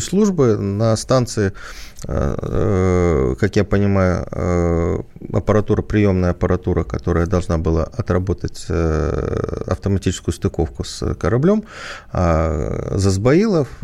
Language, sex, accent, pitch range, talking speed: Russian, male, native, 85-120 Hz, 80 wpm